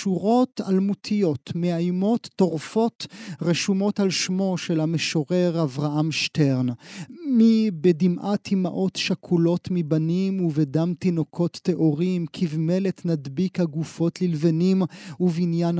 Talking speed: 90 wpm